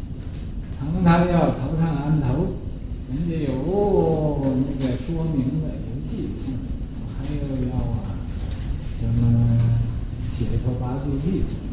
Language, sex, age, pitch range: Chinese, male, 60-79, 120-160 Hz